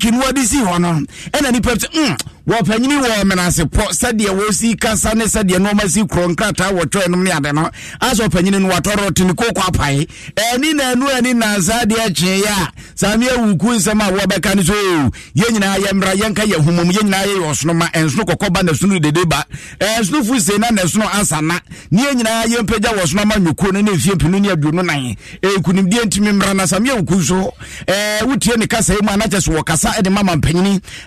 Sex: male